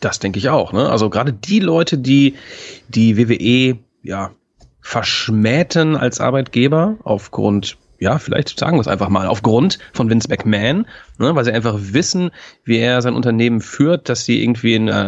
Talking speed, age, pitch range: 170 wpm, 30-49, 105-145 Hz